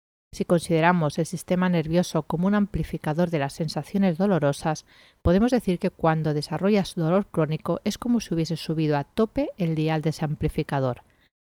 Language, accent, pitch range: Spanish, Spanish, 155-190 Hz